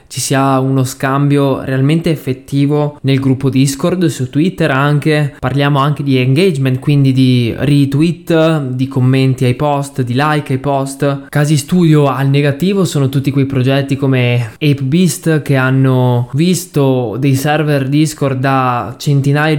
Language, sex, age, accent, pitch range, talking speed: Italian, male, 20-39, native, 125-145 Hz, 140 wpm